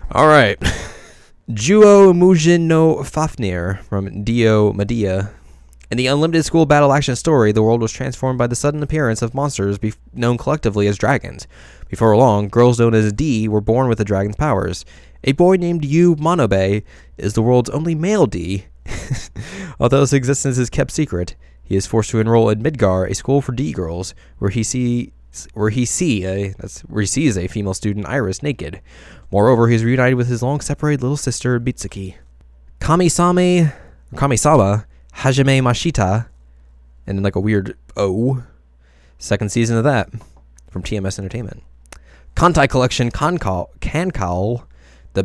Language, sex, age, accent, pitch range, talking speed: English, male, 20-39, American, 95-135 Hz, 145 wpm